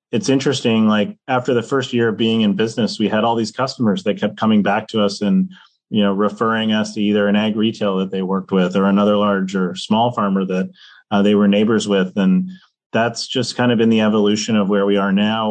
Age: 30-49